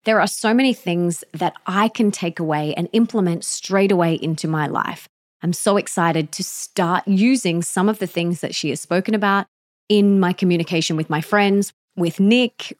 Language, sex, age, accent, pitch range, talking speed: English, female, 20-39, Australian, 170-215 Hz, 190 wpm